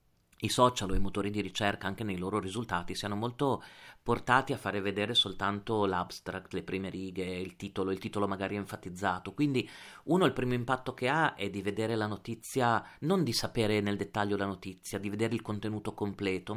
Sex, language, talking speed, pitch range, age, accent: male, Italian, 190 wpm, 95-130 Hz, 40-59, native